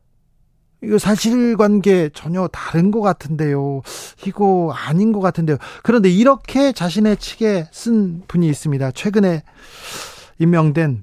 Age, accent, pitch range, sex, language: 40-59, native, 150-215 Hz, male, Korean